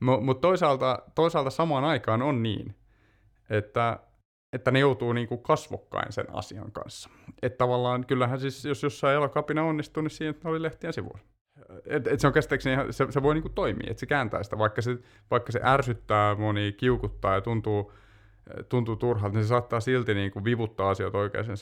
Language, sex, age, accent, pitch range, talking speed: Finnish, male, 30-49, native, 105-125 Hz, 165 wpm